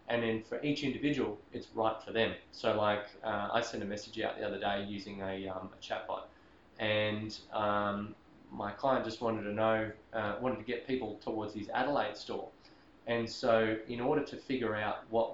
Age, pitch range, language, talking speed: 20-39, 105-115 Hz, English, 195 wpm